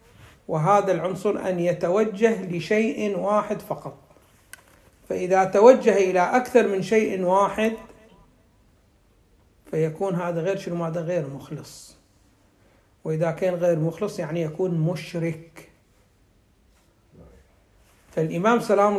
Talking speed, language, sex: 95 wpm, Arabic, male